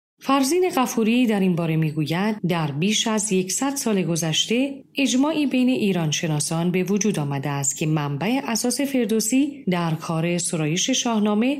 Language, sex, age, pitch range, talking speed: Persian, female, 40-59, 170-255 Hz, 140 wpm